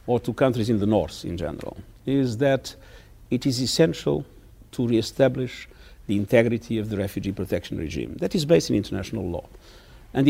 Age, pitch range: 50-69, 105-140 Hz